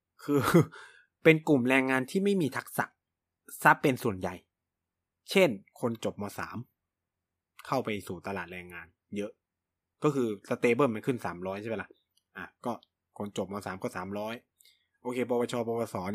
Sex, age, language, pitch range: male, 20-39, Thai, 95-145 Hz